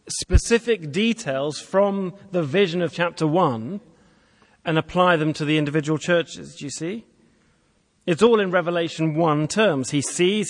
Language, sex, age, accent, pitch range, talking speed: English, male, 40-59, British, 145-195 Hz, 150 wpm